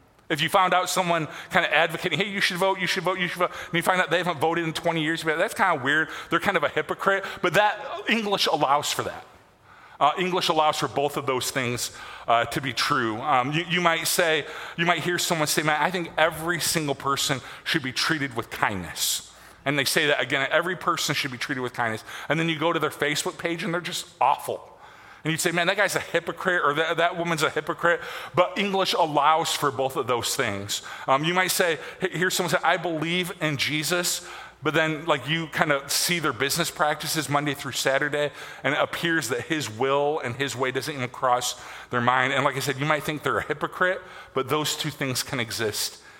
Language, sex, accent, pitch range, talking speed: English, male, American, 140-175 Hz, 230 wpm